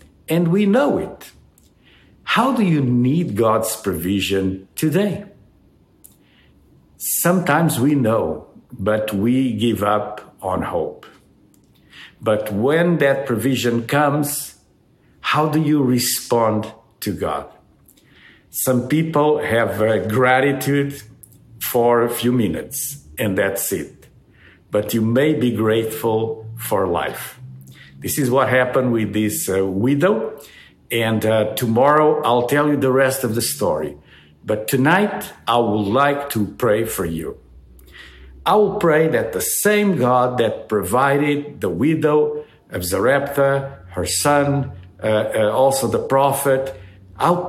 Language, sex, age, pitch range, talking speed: English, male, 50-69, 110-145 Hz, 125 wpm